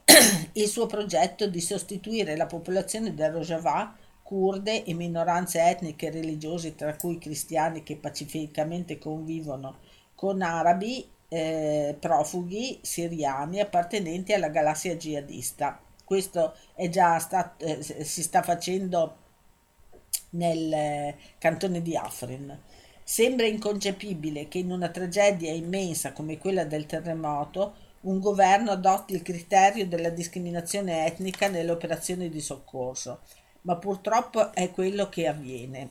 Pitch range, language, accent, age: 155-195 Hz, Italian, native, 50-69